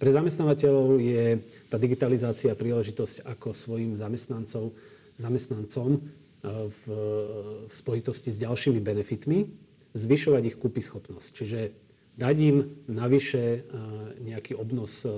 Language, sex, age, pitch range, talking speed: Slovak, male, 40-59, 105-135 Hz, 100 wpm